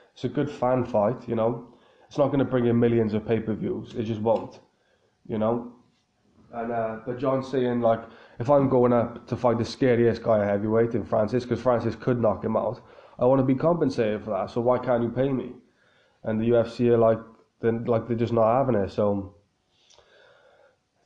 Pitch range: 110-125 Hz